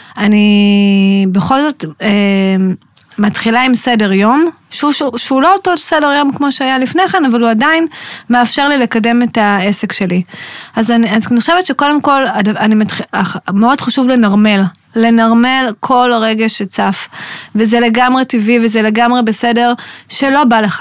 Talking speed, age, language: 150 wpm, 20-39, Hebrew